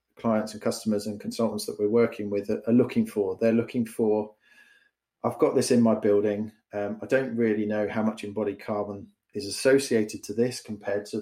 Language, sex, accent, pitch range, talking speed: English, male, British, 105-115 Hz, 195 wpm